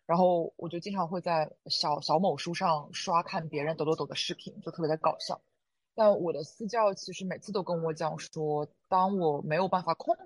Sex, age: female, 20-39